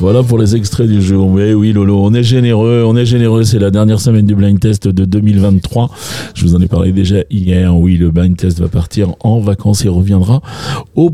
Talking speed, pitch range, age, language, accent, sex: 225 wpm, 95-125 Hz, 40-59, French, French, male